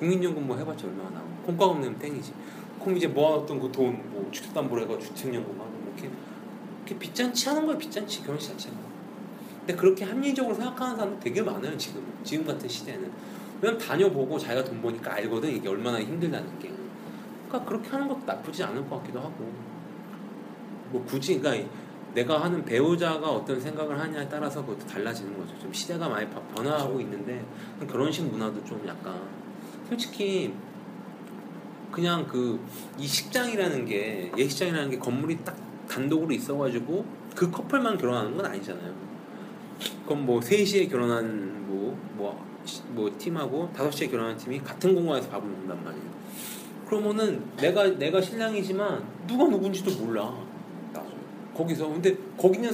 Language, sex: Korean, male